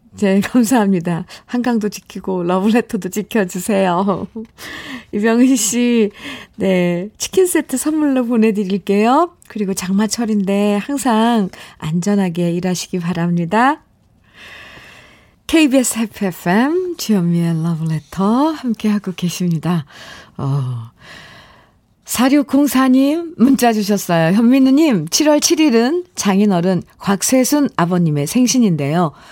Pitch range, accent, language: 175-245 Hz, native, Korean